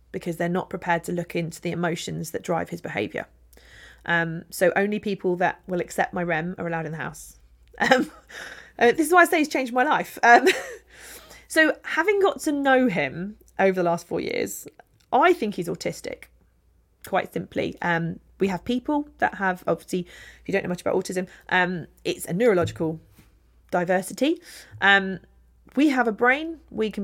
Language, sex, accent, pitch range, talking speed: English, female, British, 175-230 Hz, 180 wpm